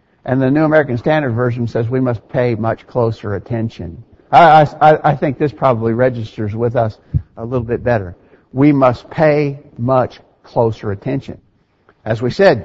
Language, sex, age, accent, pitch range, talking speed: English, male, 60-79, American, 115-155 Hz, 165 wpm